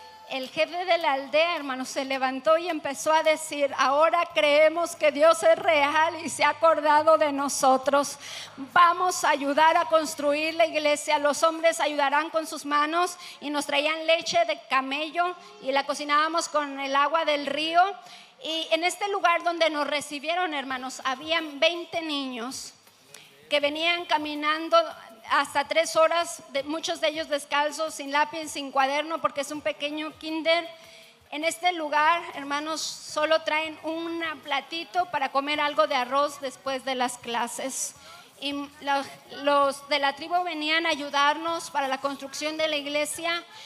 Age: 40-59